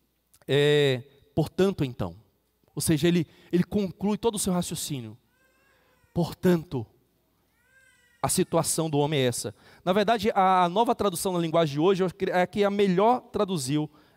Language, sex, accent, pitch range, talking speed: Portuguese, male, Brazilian, 125-175 Hz, 135 wpm